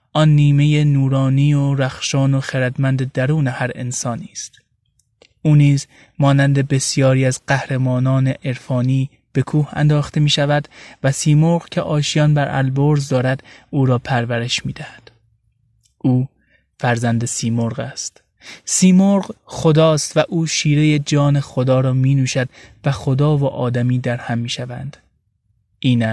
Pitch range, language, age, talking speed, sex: 120-145 Hz, Persian, 20-39, 130 wpm, male